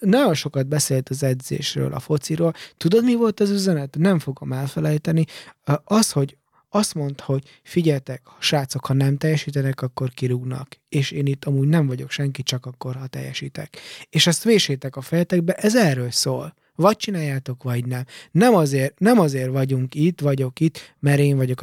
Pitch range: 135-170 Hz